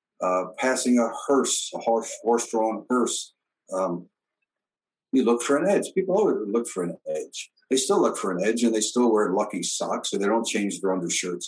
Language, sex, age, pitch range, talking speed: English, male, 60-79, 100-125 Hz, 195 wpm